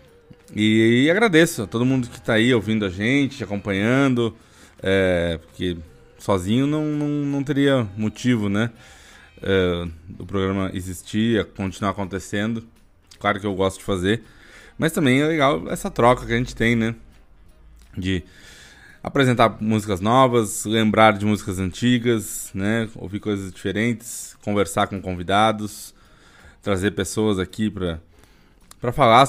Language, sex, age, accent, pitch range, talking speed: Portuguese, male, 20-39, Brazilian, 95-125 Hz, 135 wpm